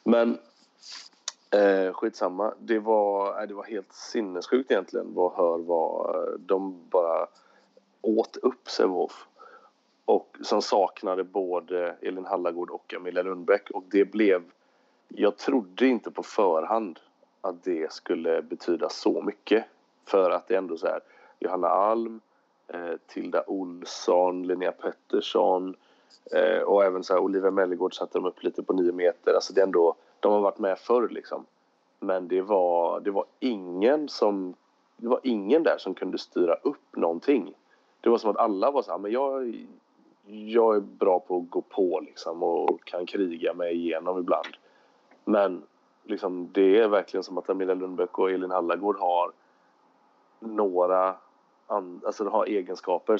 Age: 30-49